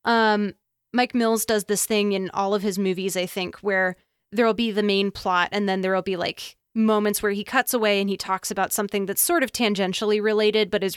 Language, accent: English, American